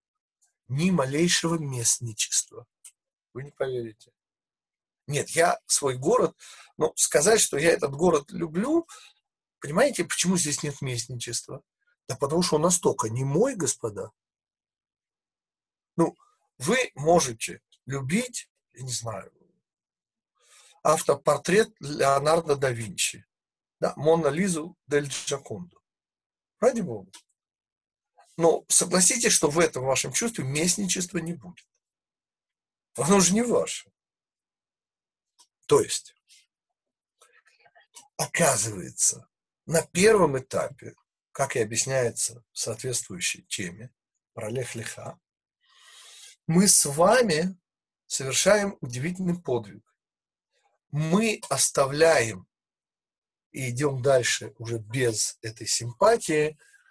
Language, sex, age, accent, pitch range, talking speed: Russian, male, 40-59, native, 130-185 Hz, 95 wpm